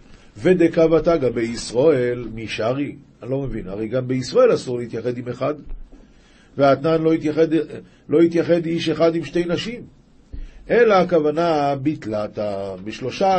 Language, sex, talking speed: Hebrew, male, 125 wpm